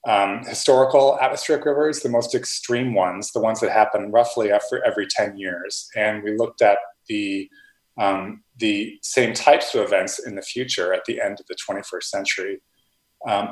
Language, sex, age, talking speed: English, male, 30-49, 175 wpm